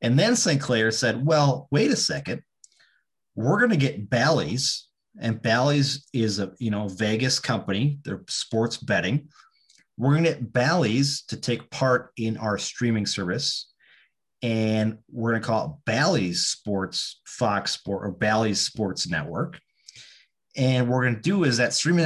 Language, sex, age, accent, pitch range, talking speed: English, male, 30-49, American, 110-140 Hz, 165 wpm